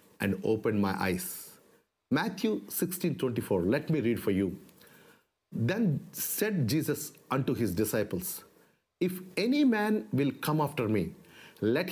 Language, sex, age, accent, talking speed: English, male, 50-69, Indian, 130 wpm